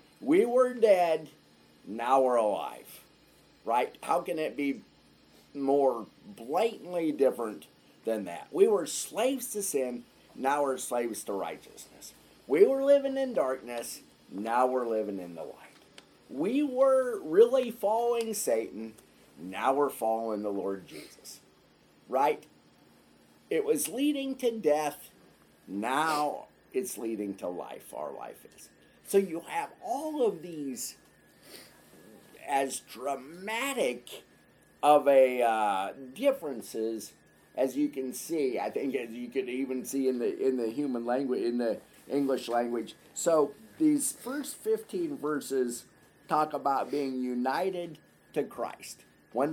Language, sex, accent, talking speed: English, male, American, 130 wpm